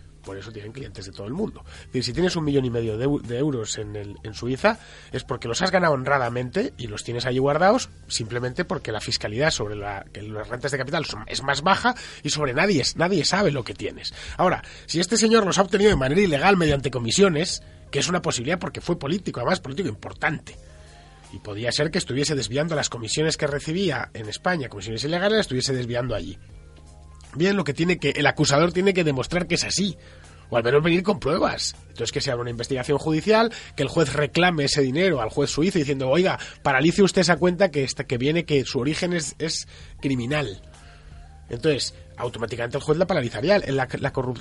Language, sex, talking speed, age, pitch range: Spanish, male, 200 wpm, 30-49, 120-170 Hz